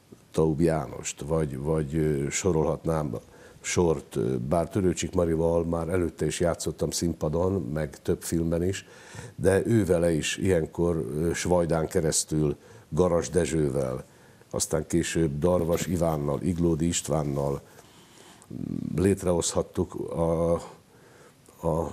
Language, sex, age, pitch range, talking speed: Hungarian, male, 60-79, 80-95 Hz, 95 wpm